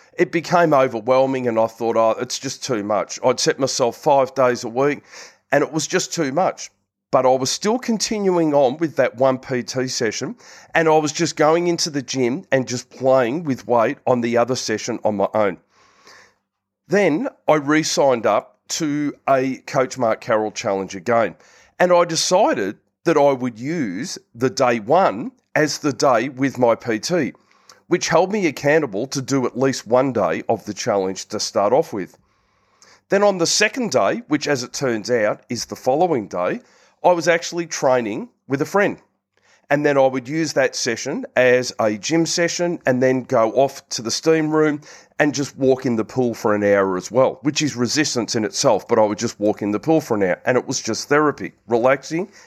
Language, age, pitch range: English, 40-59, 120-160 Hz